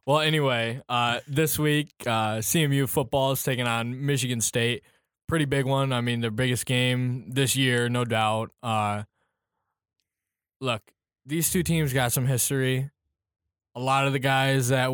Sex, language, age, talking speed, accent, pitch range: male, English, 10-29, 155 wpm, American, 115-135 Hz